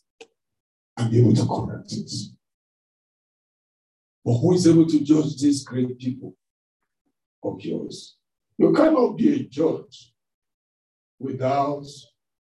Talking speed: 110 wpm